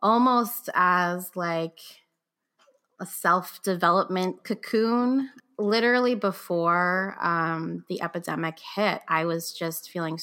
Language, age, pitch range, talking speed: English, 20-39, 165-200 Hz, 95 wpm